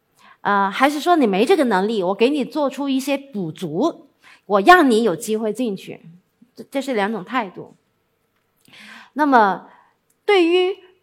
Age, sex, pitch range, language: 50-69, female, 185-255 Hz, Chinese